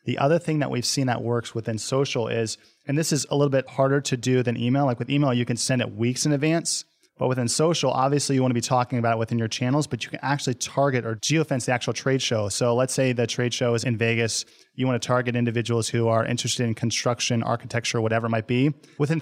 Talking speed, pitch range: 255 wpm, 120-145 Hz